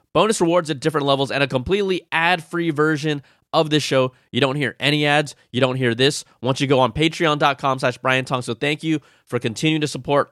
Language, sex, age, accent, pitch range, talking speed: English, male, 20-39, American, 120-160 Hz, 210 wpm